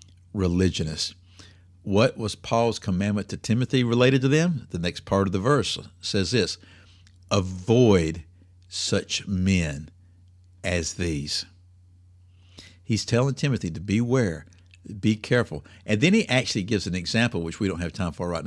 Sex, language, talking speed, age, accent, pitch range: male, English, 140 wpm, 60-79, American, 90-120 Hz